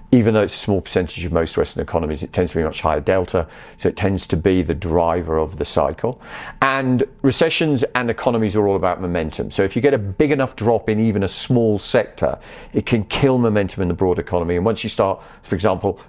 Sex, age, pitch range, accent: male, 40-59, 95-125 Hz, British